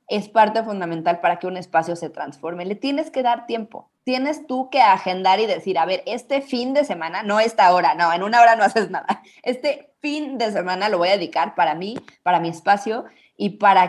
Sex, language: female, Spanish